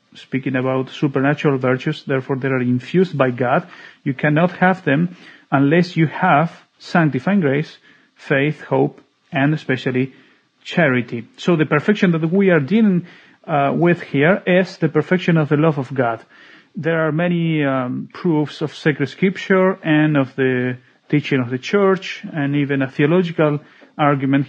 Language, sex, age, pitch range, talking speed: English, male, 40-59, 135-175 Hz, 150 wpm